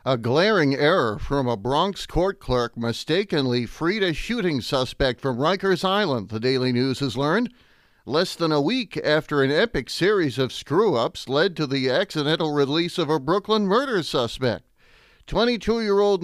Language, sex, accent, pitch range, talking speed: English, male, American, 135-190 Hz, 155 wpm